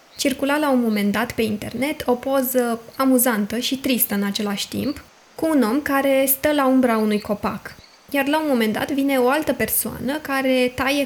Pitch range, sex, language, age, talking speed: 220-265 Hz, female, Romanian, 20-39, 190 wpm